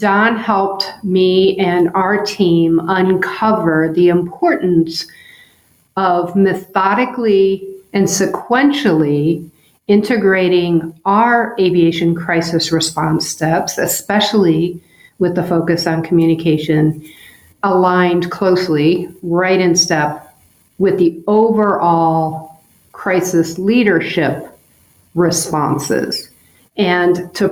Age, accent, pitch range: 50-69, American, 165-195 Hz